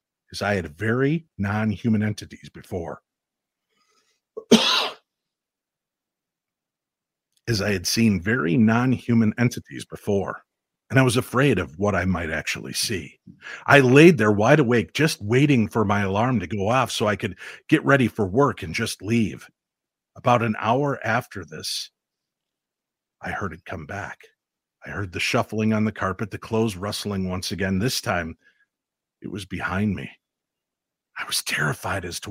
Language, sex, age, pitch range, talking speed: English, male, 50-69, 95-120 Hz, 150 wpm